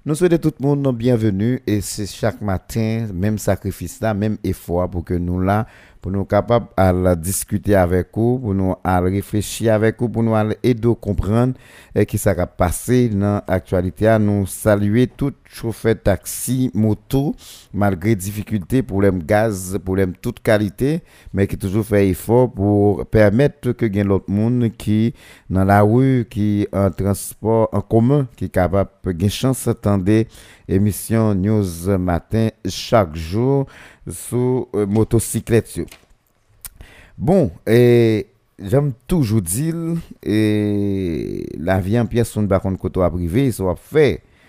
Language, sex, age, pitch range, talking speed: French, male, 50-69, 95-115 Hz, 145 wpm